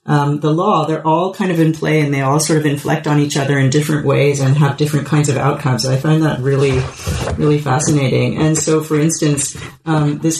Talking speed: 225 wpm